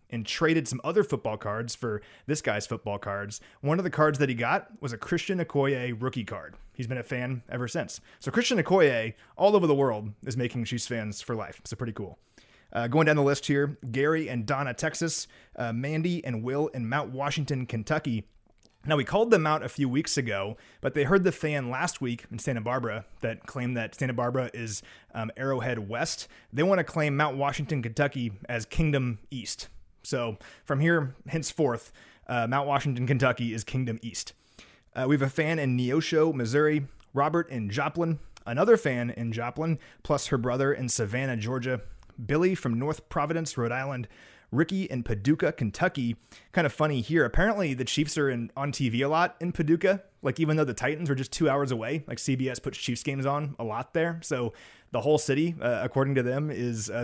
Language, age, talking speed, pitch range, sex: English, 30-49, 200 wpm, 120-155 Hz, male